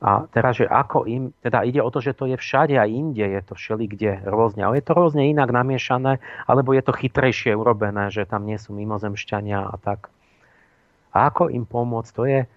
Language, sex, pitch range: Slovak, male, 105-130 Hz